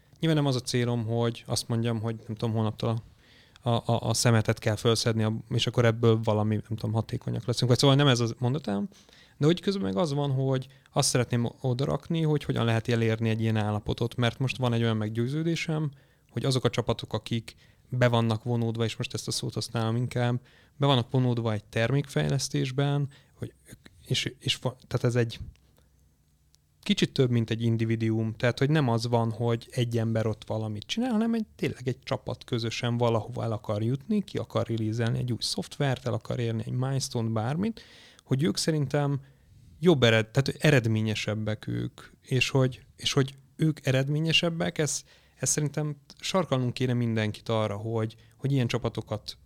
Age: 30-49